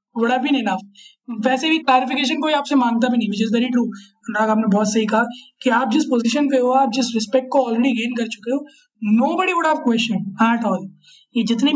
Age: 20-39